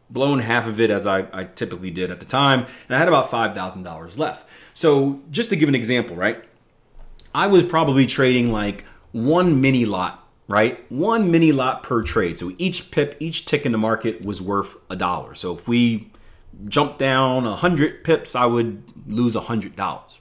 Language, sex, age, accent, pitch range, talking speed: English, male, 30-49, American, 110-150 Hz, 195 wpm